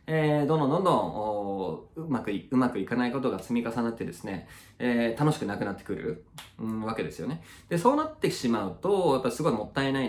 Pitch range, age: 95-145 Hz, 20-39